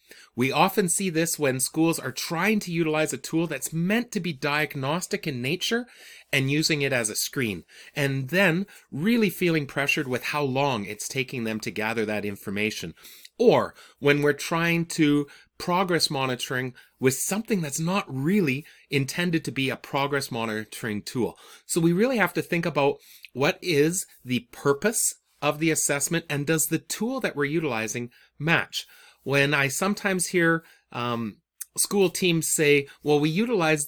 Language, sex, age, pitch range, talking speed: English, male, 30-49, 130-175 Hz, 165 wpm